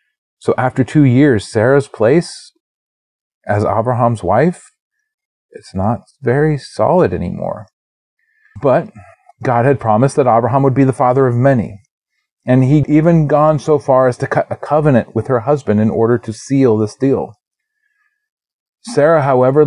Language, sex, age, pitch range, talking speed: English, male, 30-49, 105-145 Hz, 145 wpm